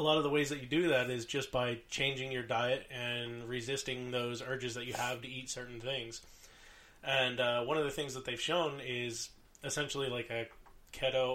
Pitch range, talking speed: 120-135 Hz, 210 wpm